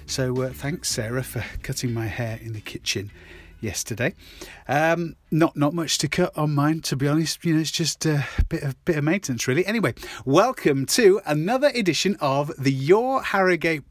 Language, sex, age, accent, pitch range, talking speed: English, male, 30-49, British, 120-160 Hz, 185 wpm